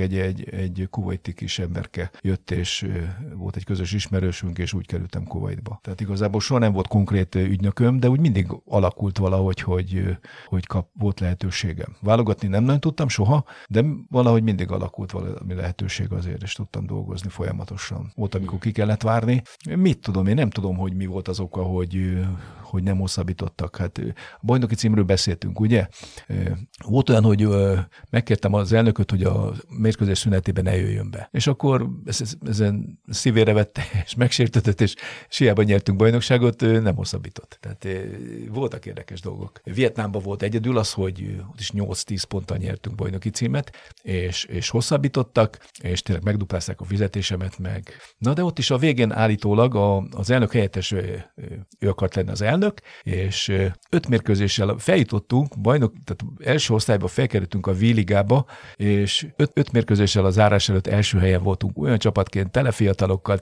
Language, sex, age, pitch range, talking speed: Hungarian, male, 50-69, 95-115 Hz, 155 wpm